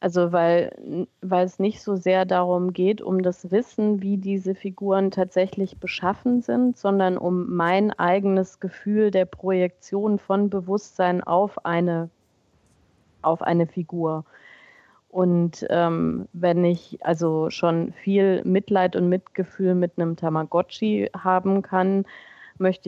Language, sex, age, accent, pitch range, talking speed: German, female, 30-49, German, 170-195 Hz, 125 wpm